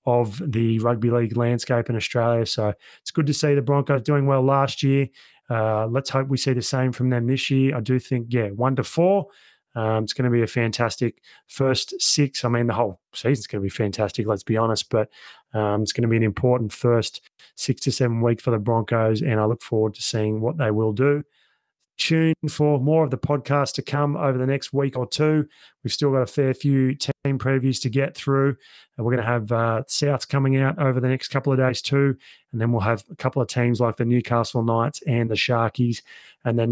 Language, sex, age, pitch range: English, male, 30-49, 115-140 Hz